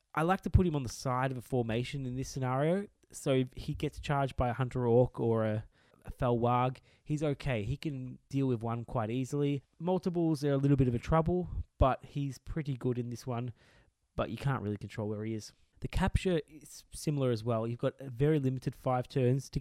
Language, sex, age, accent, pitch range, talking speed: English, male, 20-39, Australian, 115-145 Hz, 225 wpm